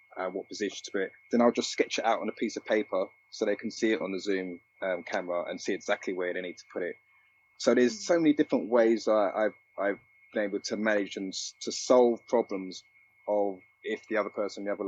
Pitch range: 90-110 Hz